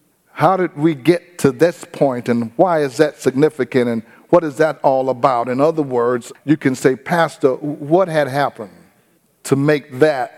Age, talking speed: 50-69, 180 wpm